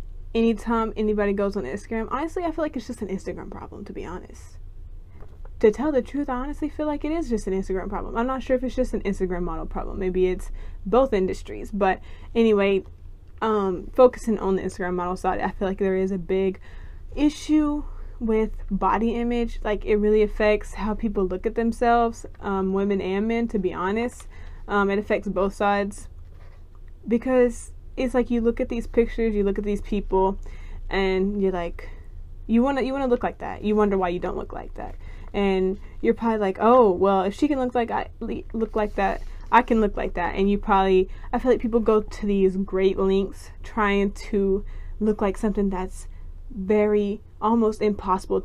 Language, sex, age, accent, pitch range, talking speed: English, female, 20-39, American, 190-230 Hz, 195 wpm